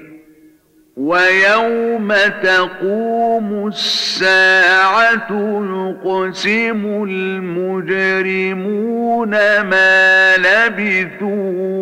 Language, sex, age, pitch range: Arabic, male, 50-69, 185-205 Hz